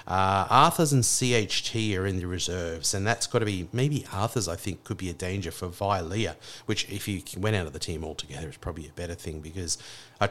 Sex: male